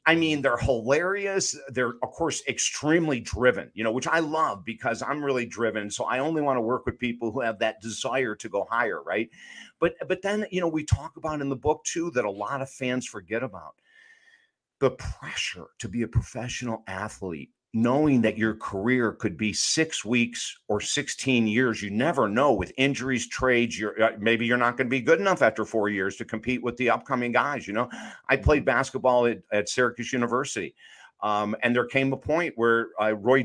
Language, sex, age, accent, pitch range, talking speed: English, male, 50-69, American, 115-150 Hz, 205 wpm